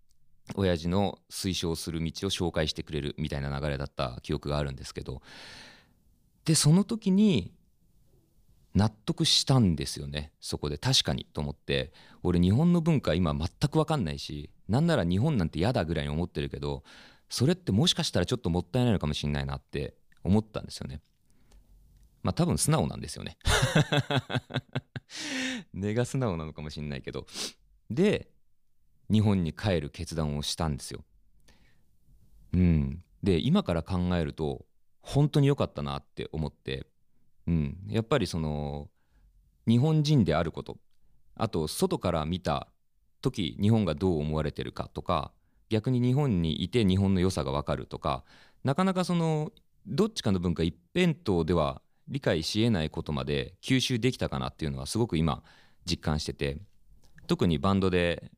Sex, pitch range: male, 75-115 Hz